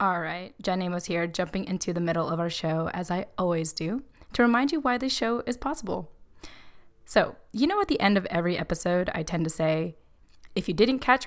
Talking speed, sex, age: 215 wpm, female, 20-39